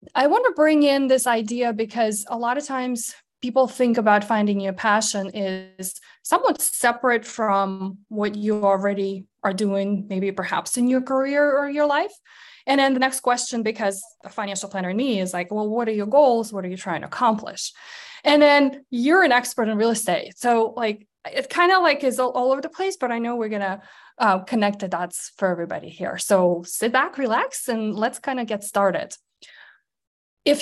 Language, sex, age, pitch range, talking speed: English, female, 20-39, 205-265 Hz, 200 wpm